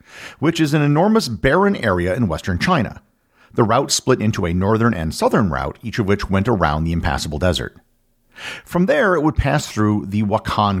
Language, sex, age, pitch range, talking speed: English, male, 50-69, 85-125 Hz, 190 wpm